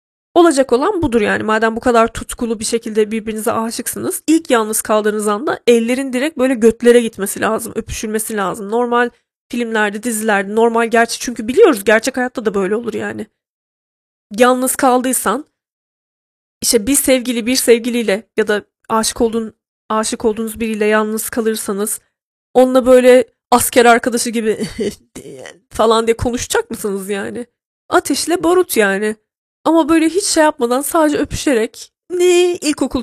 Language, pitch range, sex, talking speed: Turkish, 220-260 Hz, female, 135 wpm